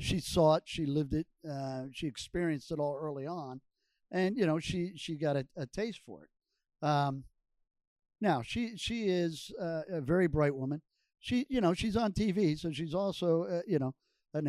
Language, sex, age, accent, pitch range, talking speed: English, male, 50-69, American, 145-180 Hz, 195 wpm